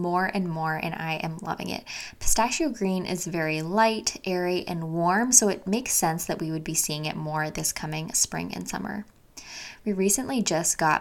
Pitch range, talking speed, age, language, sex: 160-200 Hz, 195 wpm, 10-29, English, female